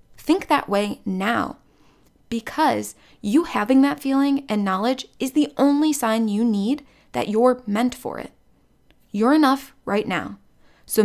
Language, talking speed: English, 145 wpm